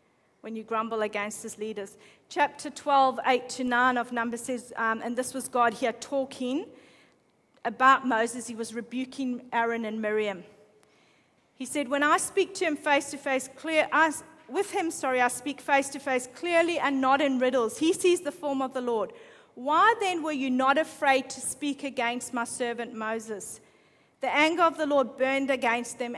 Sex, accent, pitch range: female, Australian, 235-290 Hz